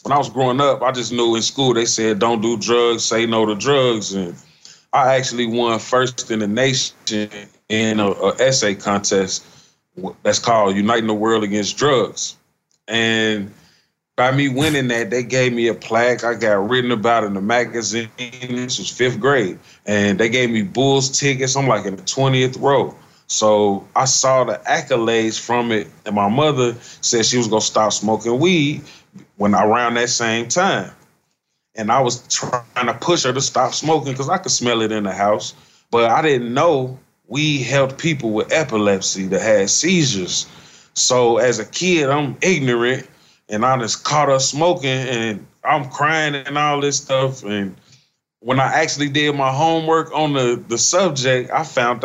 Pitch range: 110-135 Hz